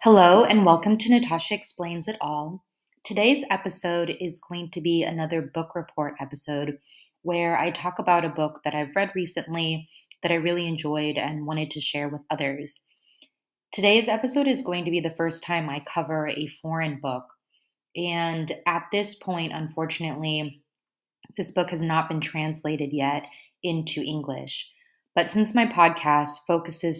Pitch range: 150-175 Hz